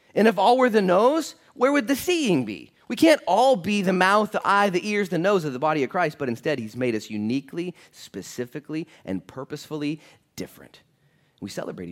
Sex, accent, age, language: male, American, 30-49, English